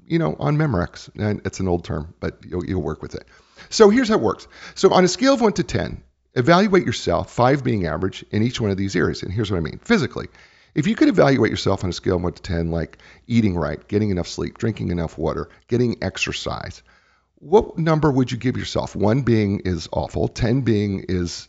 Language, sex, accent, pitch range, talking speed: English, male, American, 85-135 Hz, 225 wpm